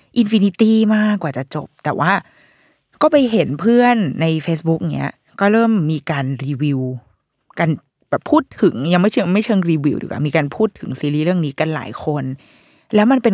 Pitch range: 150-215 Hz